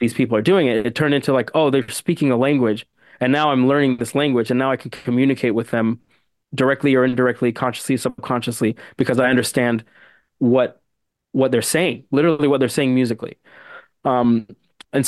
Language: English